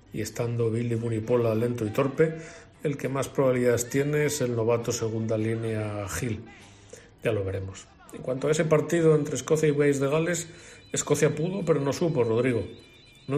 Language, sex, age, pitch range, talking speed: Spanish, male, 40-59, 110-140 Hz, 175 wpm